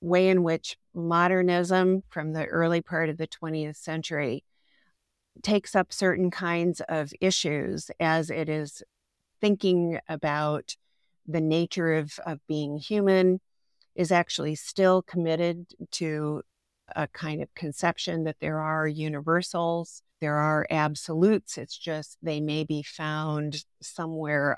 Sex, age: female, 50-69